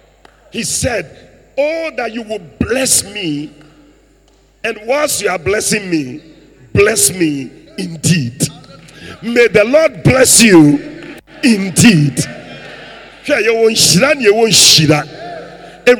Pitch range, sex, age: 170-280 Hz, male, 50-69